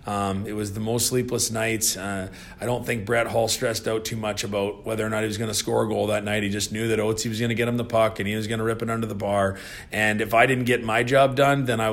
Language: English